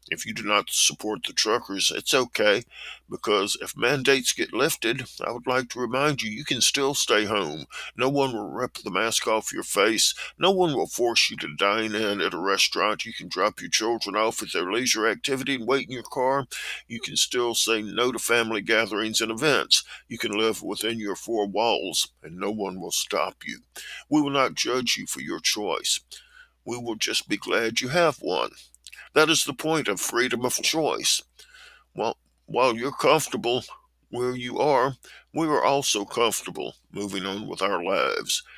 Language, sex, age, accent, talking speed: English, male, 50-69, American, 190 wpm